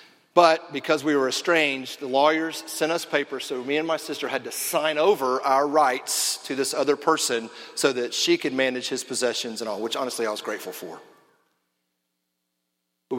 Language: English